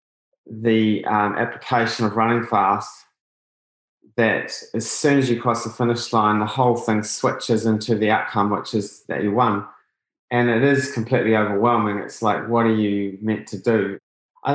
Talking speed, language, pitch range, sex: 170 wpm, English, 105-120 Hz, male